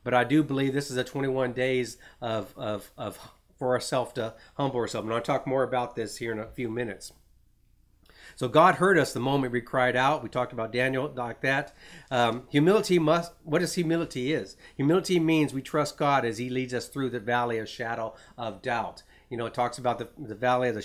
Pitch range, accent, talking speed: 120-150 Hz, American, 220 wpm